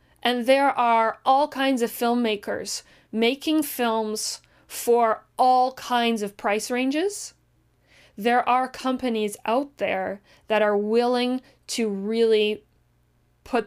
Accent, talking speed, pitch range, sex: American, 115 wpm, 205-245 Hz, female